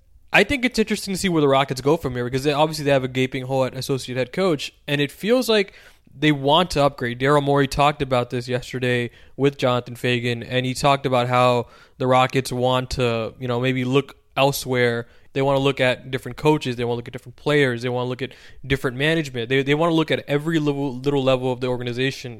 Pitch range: 125-150 Hz